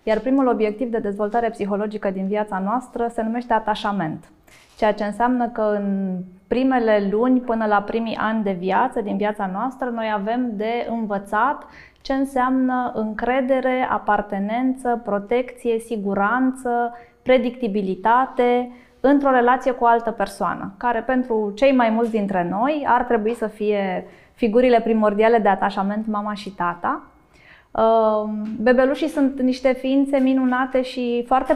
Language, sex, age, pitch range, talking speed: Romanian, female, 20-39, 205-245 Hz, 135 wpm